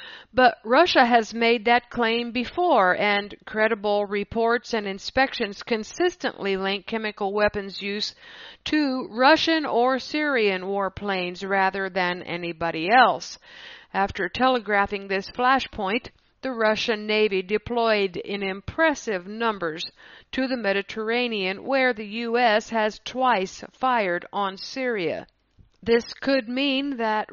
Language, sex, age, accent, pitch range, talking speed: English, female, 50-69, American, 195-245 Hz, 115 wpm